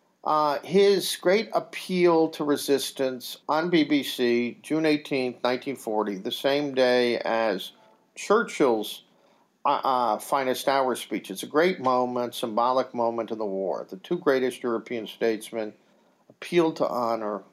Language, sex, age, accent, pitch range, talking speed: English, male, 50-69, American, 115-145 Hz, 125 wpm